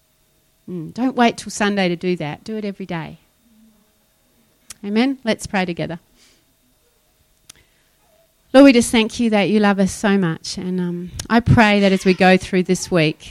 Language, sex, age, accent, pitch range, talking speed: English, female, 30-49, Australian, 170-195 Hz, 170 wpm